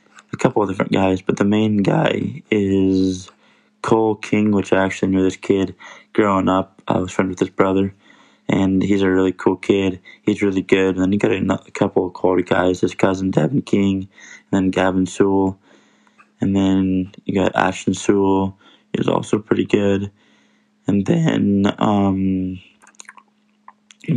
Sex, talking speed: male, 170 wpm